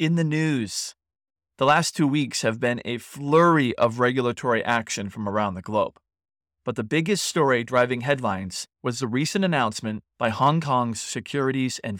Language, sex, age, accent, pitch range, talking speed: English, male, 30-49, American, 110-140 Hz, 165 wpm